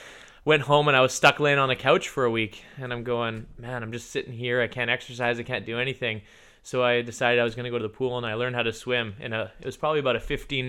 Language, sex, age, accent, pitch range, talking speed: English, male, 20-39, American, 115-135 Hz, 300 wpm